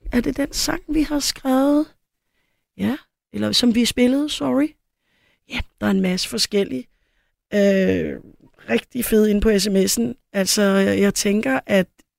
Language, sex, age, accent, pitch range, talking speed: Danish, female, 30-49, native, 185-235 Hz, 145 wpm